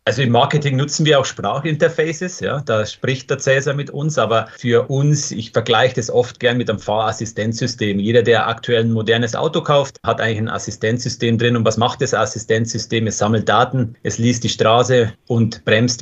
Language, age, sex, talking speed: German, 30-49, male, 185 wpm